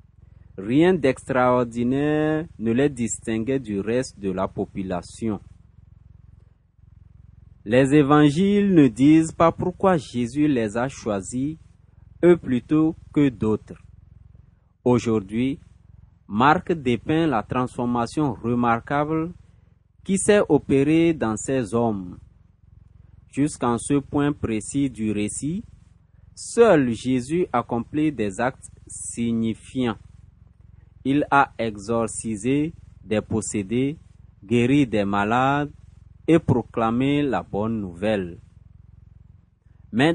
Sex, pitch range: male, 105-140 Hz